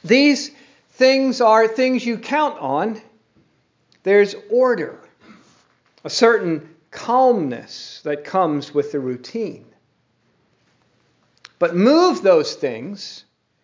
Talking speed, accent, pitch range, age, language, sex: 90 wpm, American, 175-250 Hz, 50-69, English, male